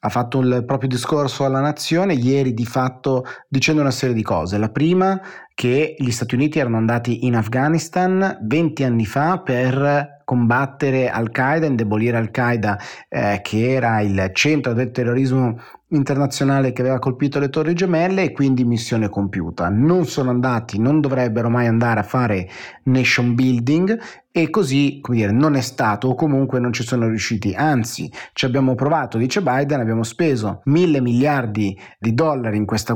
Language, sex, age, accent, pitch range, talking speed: Italian, male, 30-49, native, 115-145 Hz, 160 wpm